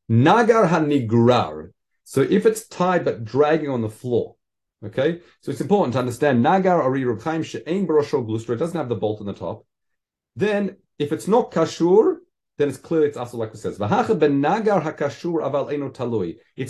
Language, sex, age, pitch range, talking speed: English, male, 40-59, 120-175 Hz, 160 wpm